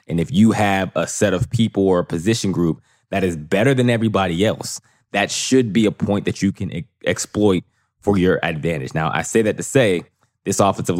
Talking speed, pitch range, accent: 215 wpm, 90-105 Hz, American